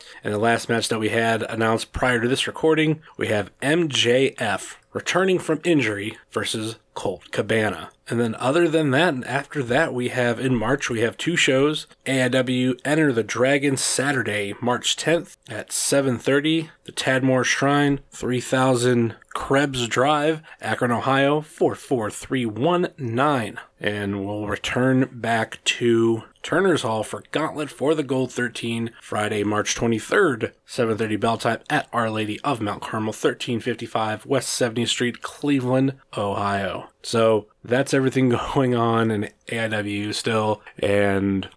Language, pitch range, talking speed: English, 105-130 Hz, 135 wpm